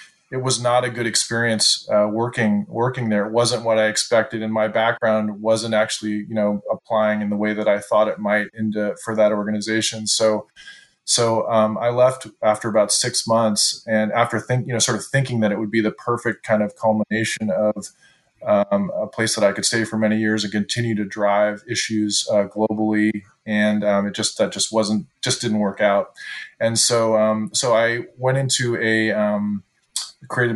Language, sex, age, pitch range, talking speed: English, male, 20-39, 105-115 Hz, 195 wpm